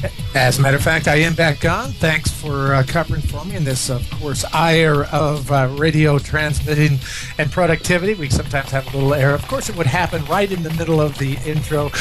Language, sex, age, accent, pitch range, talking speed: English, male, 50-69, American, 130-155 Hz, 220 wpm